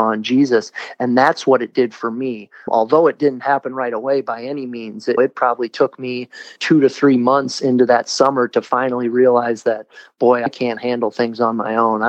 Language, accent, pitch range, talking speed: English, American, 115-130 Hz, 210 wpm